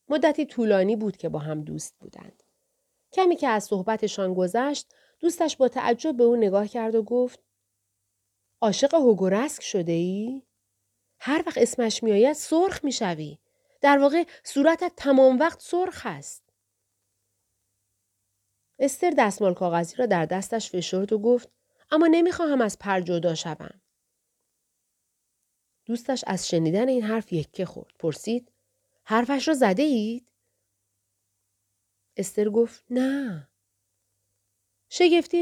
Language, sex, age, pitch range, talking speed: Persian, female, 40-59, 160-260 Hz, 120 wpm